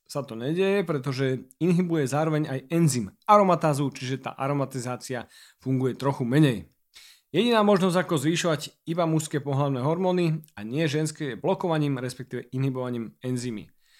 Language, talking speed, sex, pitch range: Slovak, 135 wpm, male, 130-165 Hz